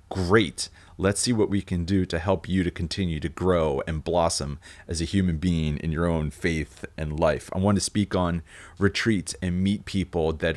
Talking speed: 205 wpm